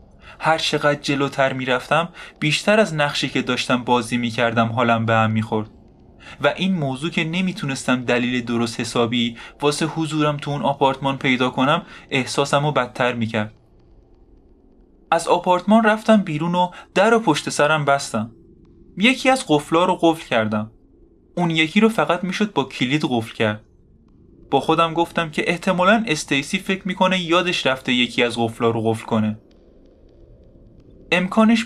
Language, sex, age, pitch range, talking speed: Persian, male, 20-39, 120-175 Hz, 140 wpm